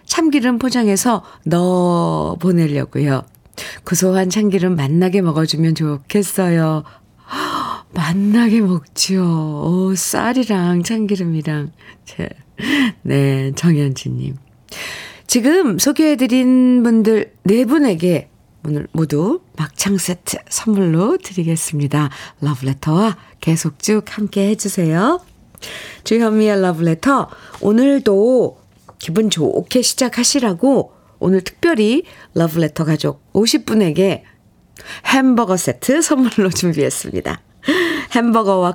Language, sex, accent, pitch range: Korean, female, native, 160-235 Hz